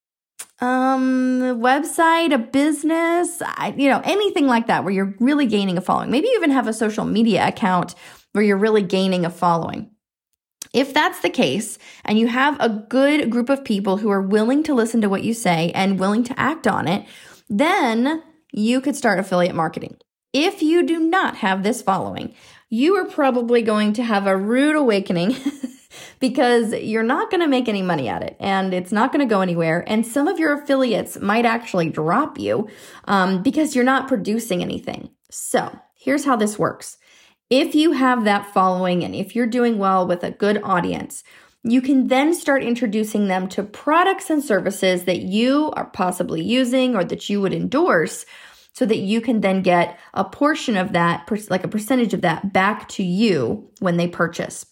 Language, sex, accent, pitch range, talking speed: English, female, American, 195-270 Hz, 185 wpm